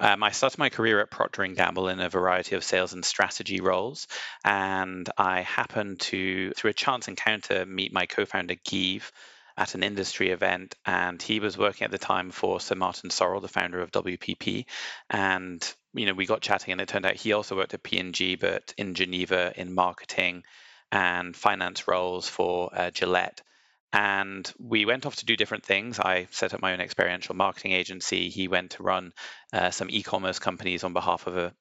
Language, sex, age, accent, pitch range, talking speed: English, male, 30-49, British, 90-100 Hz, 195 wpm